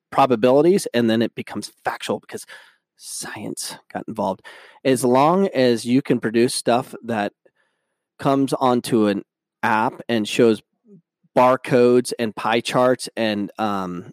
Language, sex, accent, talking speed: English, male, American, 125 wpm